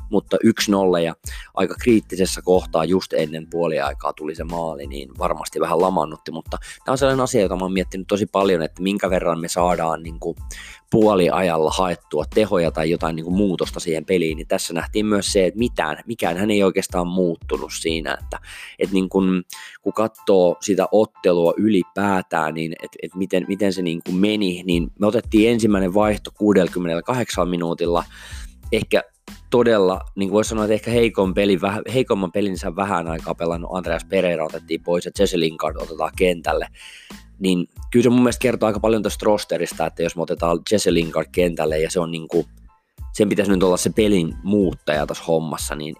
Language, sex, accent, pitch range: Finnish, male, native, 80-100 Hz